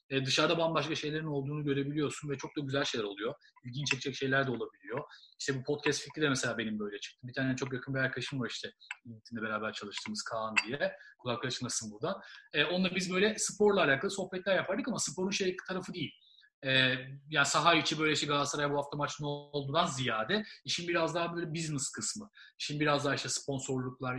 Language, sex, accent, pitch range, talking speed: Turkish, male, native, 130-170 Hz, 195 wpm